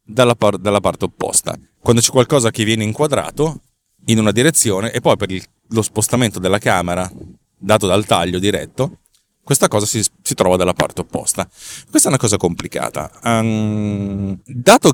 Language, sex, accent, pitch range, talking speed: Italian, male, native, 95-125 Hz, 155 wpm